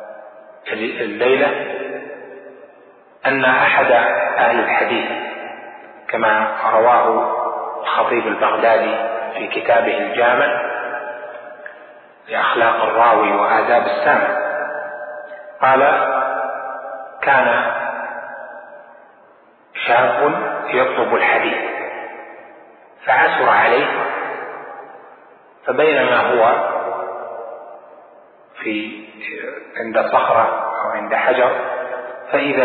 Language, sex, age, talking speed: Arabic, male, 40-59, 60 wpm